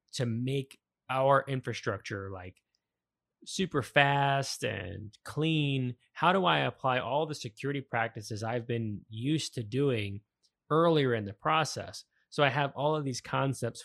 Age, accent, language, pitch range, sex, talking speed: 20-39, American, English, 110-140 Hz, male, 145 wpm